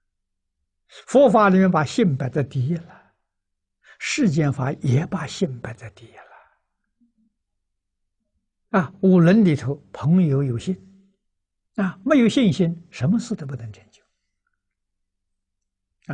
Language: Chinese